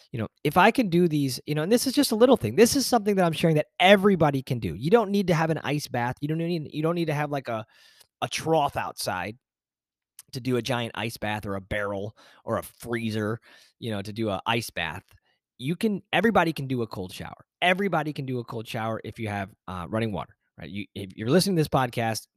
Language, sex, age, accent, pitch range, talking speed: English, male, 20-39, American, 115-170 Hz, 250 wpm